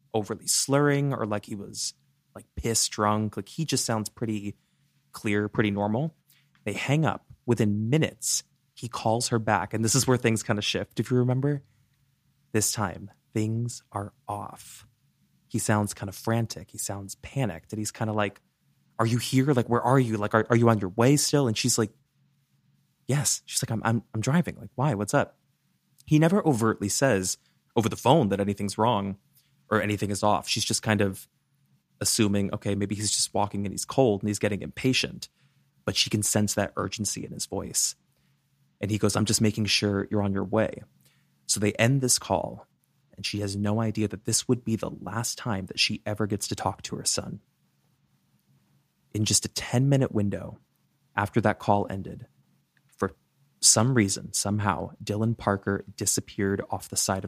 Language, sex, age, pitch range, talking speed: English, male, 20-39, 100-120 Hz, 190 wpm